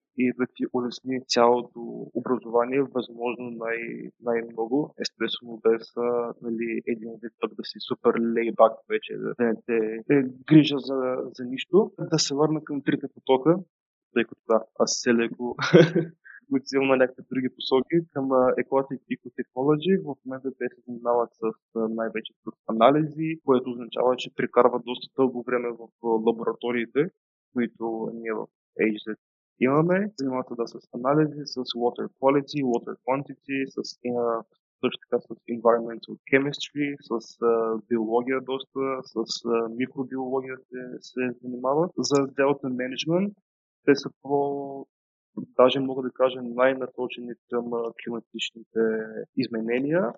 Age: 20-39